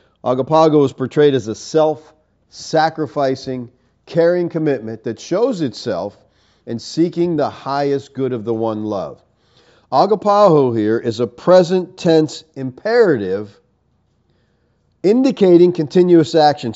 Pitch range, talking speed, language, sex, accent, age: 130-175 Hz, 105 wpm, English, male, American, 50-69